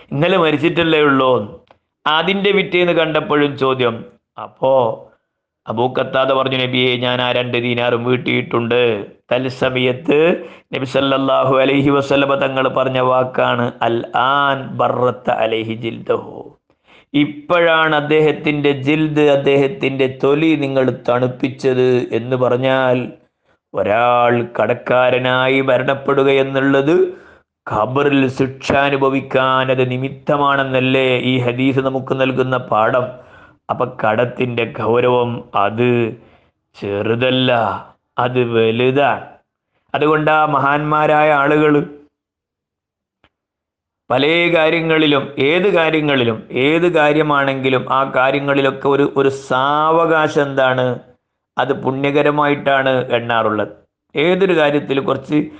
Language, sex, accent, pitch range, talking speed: Malayalam, male, native, 125-145 Hz, 70 wpm